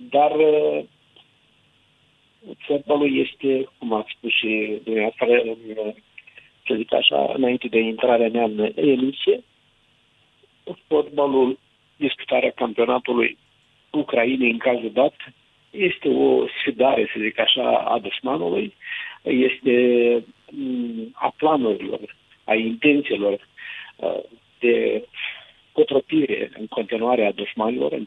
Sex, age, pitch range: male, 50-69, 120-185 Hz